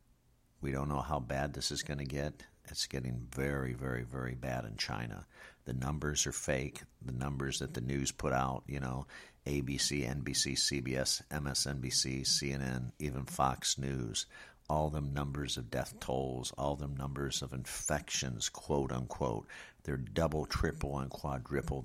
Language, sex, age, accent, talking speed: English, male, 50-69, American, 155 wpm